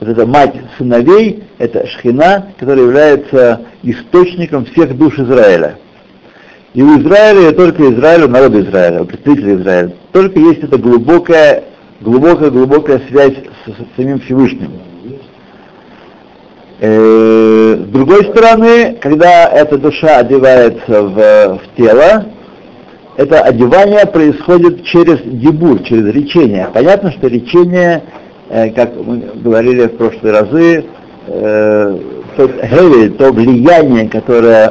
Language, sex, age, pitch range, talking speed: Russian, male, 60-79, 115-165 Hz, 115 wpm